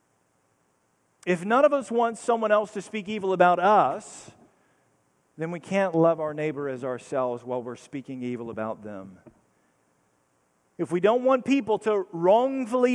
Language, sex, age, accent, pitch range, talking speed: English, male, 40-59, American, 125-200 Hz, 155 wpm